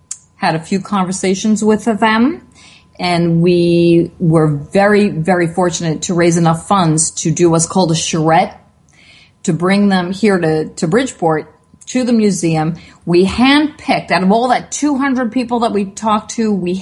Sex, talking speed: female, 160 wpm